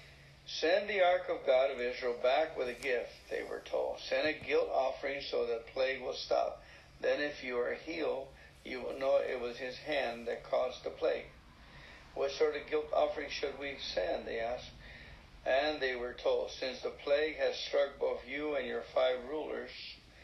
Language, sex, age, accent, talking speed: English, male, 60-79, American, 195 wpm